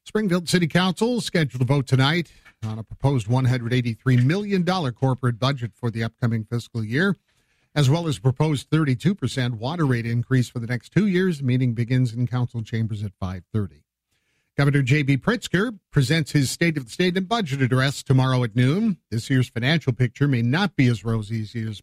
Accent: American